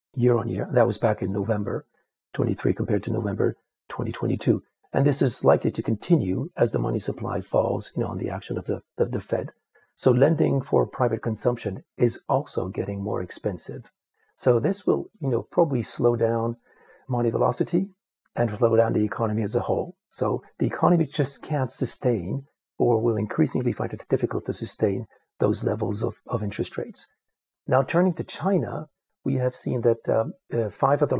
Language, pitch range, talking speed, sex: English, 110-135 Hz, 190 wpm, male